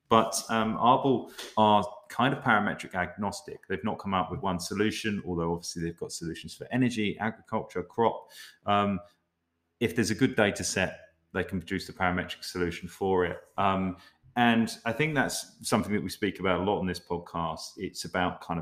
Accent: British